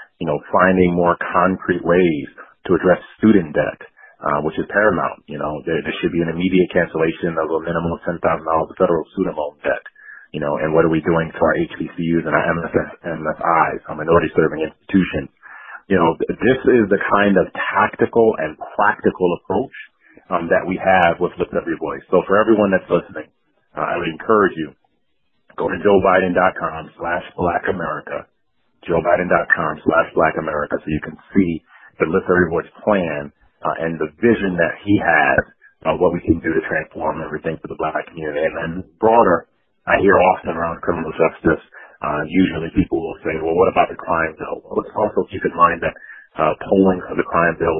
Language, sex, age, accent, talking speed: English, male, 30-49, American, 185 wpm